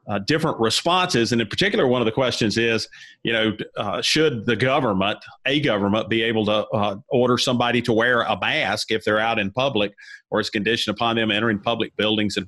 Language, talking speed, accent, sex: English, 205 wpm, American, male